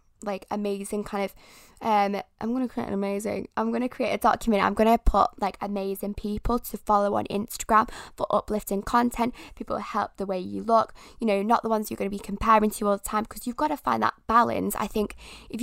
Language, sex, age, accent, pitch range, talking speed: English, female, 10-29, British, 200-230 Hz, 235 wpm